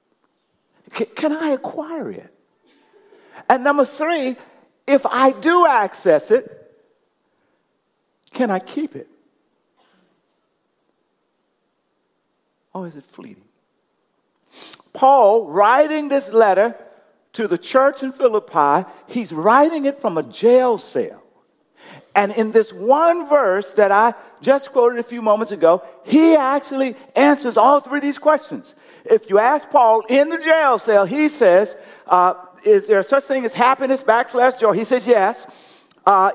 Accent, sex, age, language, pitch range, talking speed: American, male, 50-69, English, 225-310 Hz, 130 wpm